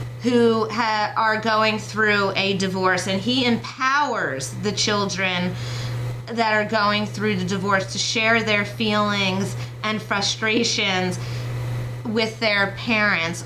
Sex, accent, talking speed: female, American, 115 wpm